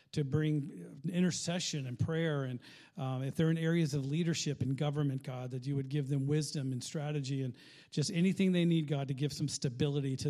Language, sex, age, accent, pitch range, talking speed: English, male, 50-69, American, 135-160 Hz, 205 wpm